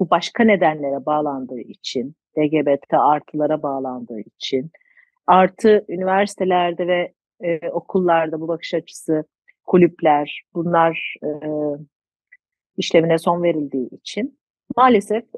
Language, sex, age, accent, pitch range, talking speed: Turkish, female, 40-59, native, 165-230 Hz, 100 wpm